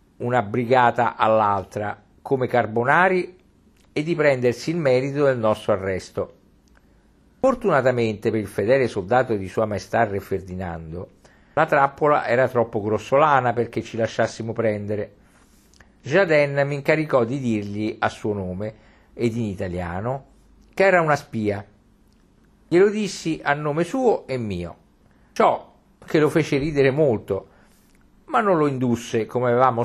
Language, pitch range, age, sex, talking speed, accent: Italian, 110-150 Hz, 50-69, male, 135 wpm, native